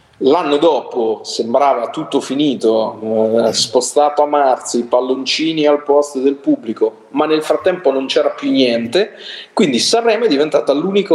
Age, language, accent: 40-59, Italian, native